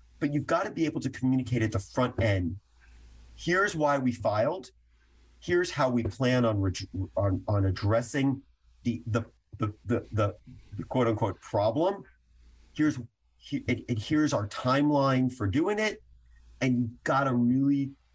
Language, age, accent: English, 40-59, American